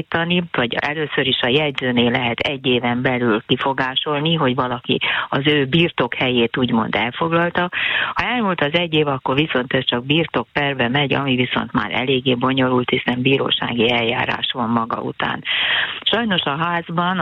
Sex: female